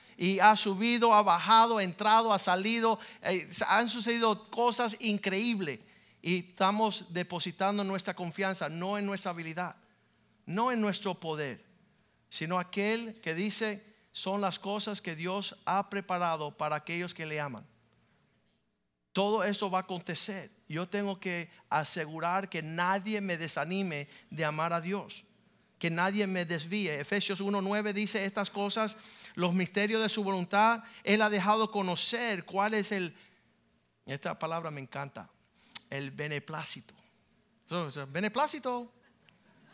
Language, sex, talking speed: Spanish, male, 135 wpm